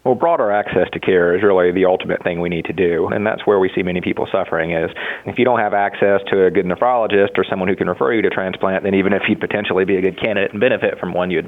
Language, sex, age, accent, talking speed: English, male, 30-49, American, 280 wpm